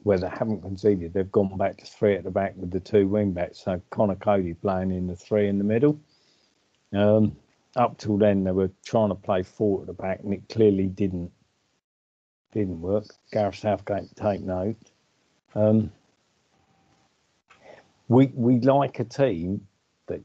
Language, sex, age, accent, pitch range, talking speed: English, male, 50-69, British, 95-110 Hz, 170 wpm